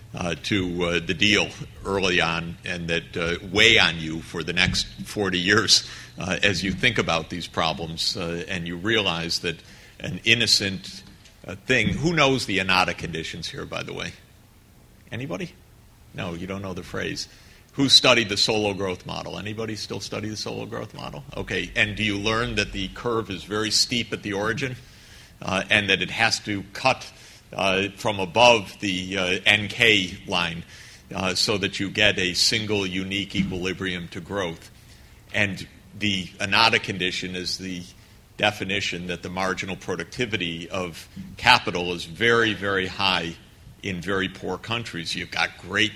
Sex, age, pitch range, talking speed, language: male, 50-69, 90-105 Hz, 165 wpm, English